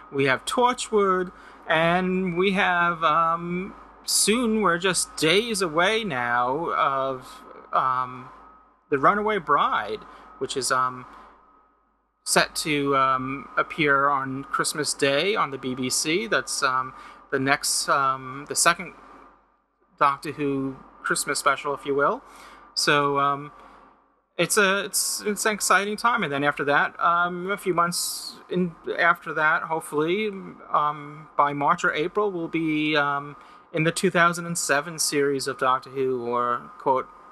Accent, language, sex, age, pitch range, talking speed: American, English, male, 30-49, 140-195 Hz, 135 wpm